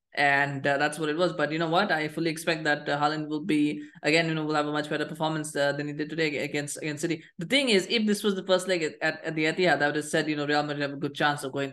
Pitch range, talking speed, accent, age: 145-175 Hz, 315 wpm, Indian, 20-39